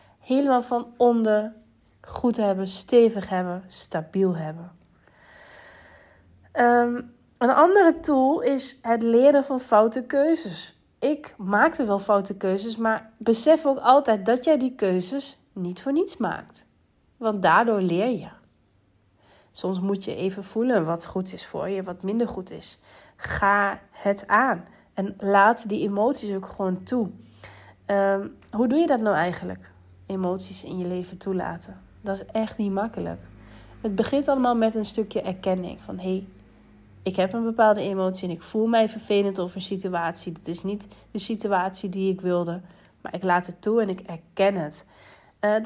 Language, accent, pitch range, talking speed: Dutch, Dutch, 185-230 Hz, 155 wpm